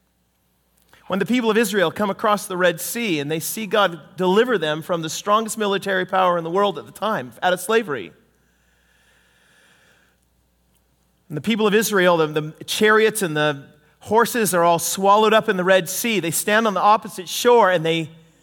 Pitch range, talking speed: 150-220 Hz, 185 wpm